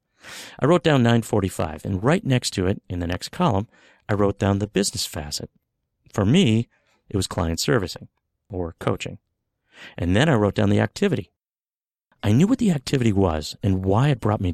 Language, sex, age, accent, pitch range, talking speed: English, male, 50-69, American, 95-130 Hz, 185 wpm